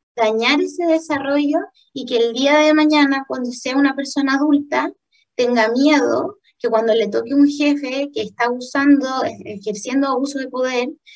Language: Spanish